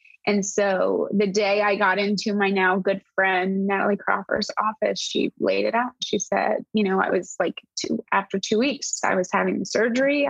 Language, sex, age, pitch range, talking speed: English, female, 20-39, 195-215 Hz, 190 wpm